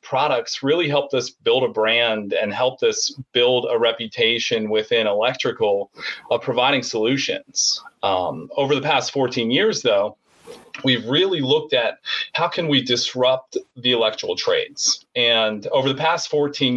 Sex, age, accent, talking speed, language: male, 30-49, American, 145 wpm, English